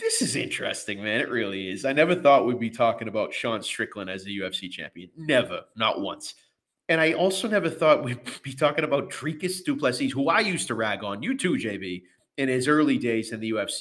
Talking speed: 215 wpm